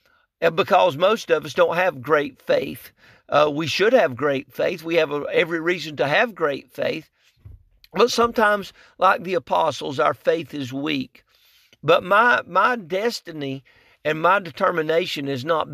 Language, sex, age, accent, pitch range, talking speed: English, male, 50-69, American, 145-210 Hz, 155 wpm